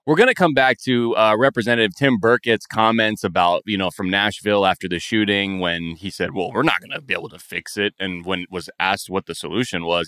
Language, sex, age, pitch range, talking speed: English, male, 20-39, 95-125 Hz, 245 wpm